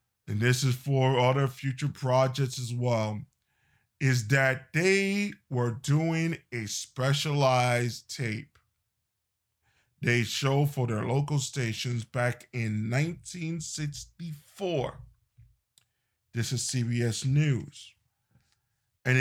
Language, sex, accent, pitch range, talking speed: English, male, American, 115-140 Hz, 95 wpm